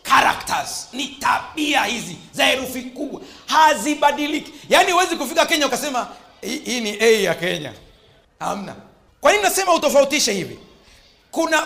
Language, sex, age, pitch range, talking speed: Swahili, male, 40-59, 165-275 Hz, 130 wpm